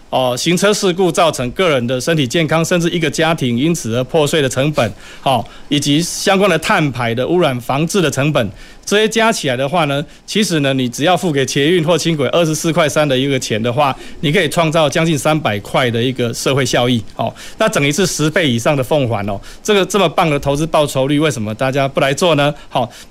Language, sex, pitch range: Chinese, male, 135-185 Hz